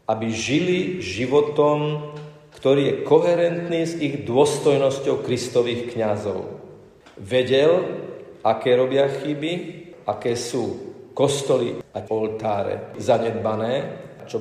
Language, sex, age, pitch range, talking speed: Slovak, male, 40-59, 110-150 Hz, 90 wpm